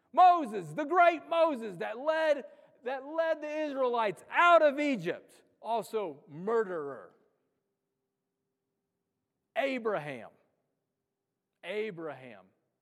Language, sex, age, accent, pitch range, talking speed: English, male, 40-59, American, 145-195 Hz, 80 wpm